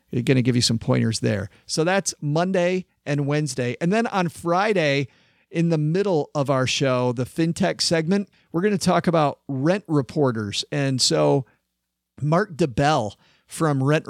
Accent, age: American, 40-59